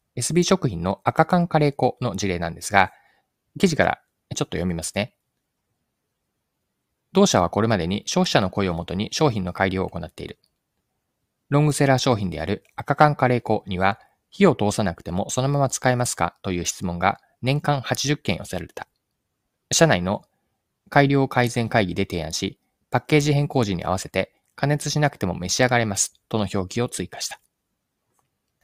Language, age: Japanese, 20-39